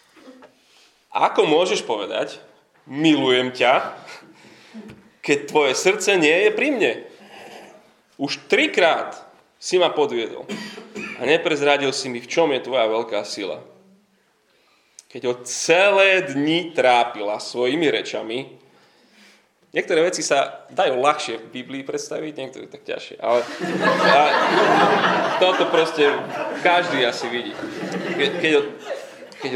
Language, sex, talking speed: Slovak, male, 115 wpm